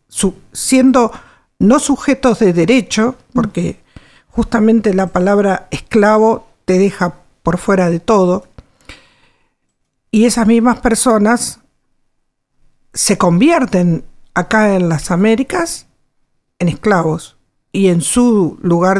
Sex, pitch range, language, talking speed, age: female, 175-230 Hz, Spanish, 100 wpm, 50-69